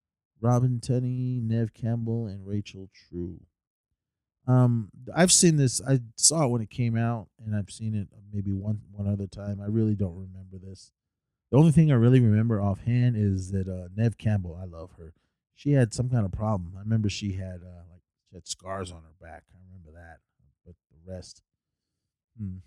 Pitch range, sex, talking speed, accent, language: 90-115 Hz, male, 190 wpm, American, English